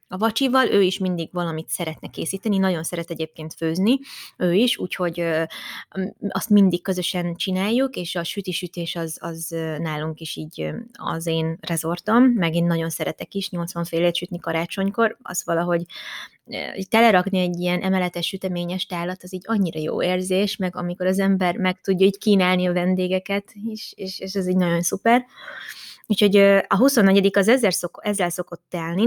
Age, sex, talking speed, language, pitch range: 20-39, female, 160 wpm, Hungarian, 175-205 Hz